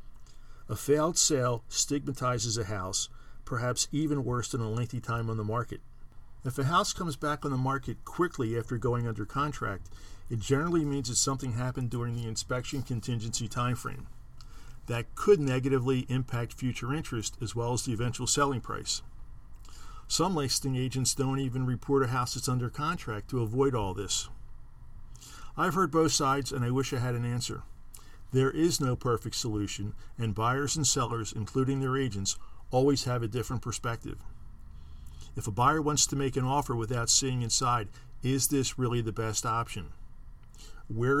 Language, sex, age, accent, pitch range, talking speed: English, male, 50-69, American, 115-135 Hz, 165 wpm